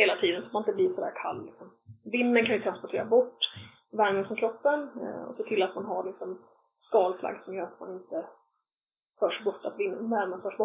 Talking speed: 205 wpm